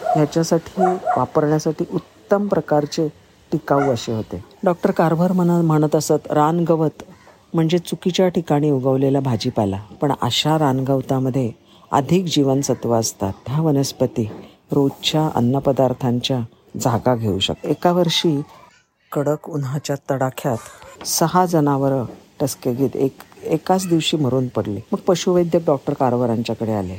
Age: 50-69